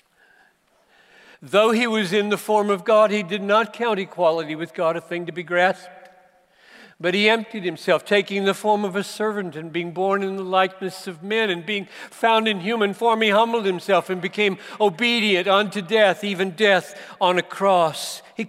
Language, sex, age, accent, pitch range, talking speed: English, male, 60-79, American, 160-210 Hz, 190 wpm